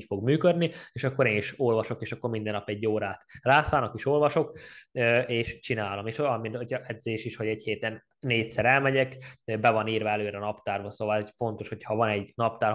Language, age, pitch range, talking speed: Hungarian, 20-39, 105-120 Hz, 200 wpm